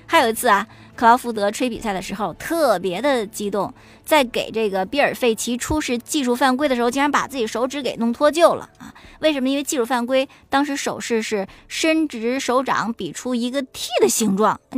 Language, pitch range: Chinese, 215-270 Hz